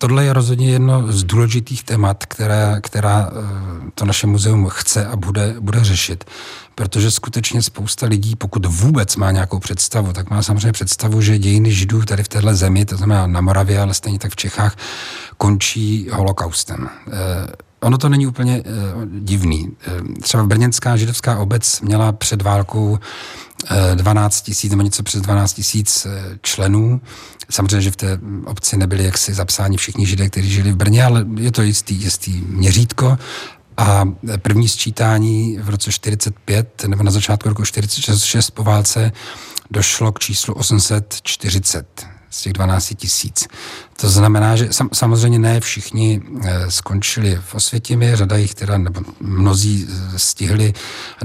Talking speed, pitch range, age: 150 wpm, 100-110 Hz, 40-59